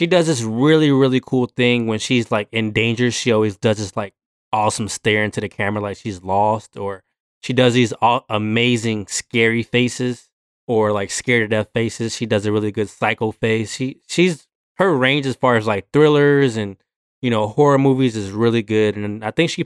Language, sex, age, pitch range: English, male, 20-39, 105-130 Hz